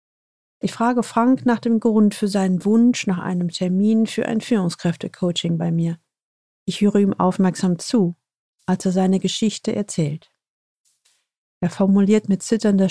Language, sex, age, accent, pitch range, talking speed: German, female, 40-59, German, 185-220 Hz, 145 wpm